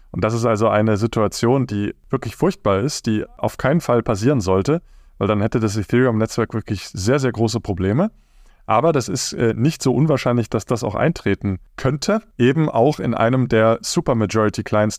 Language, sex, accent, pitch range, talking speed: German, male, German, 100-125 Hz, 175 wpm